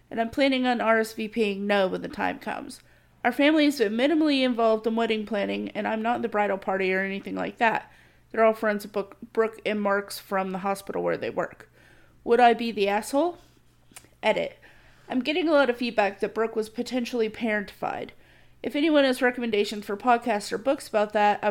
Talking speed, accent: 195 wpm, American